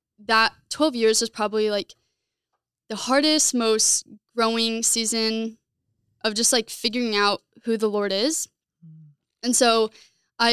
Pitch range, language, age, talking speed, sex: 205-235 Hz, English, 10-29, 130 wpm, female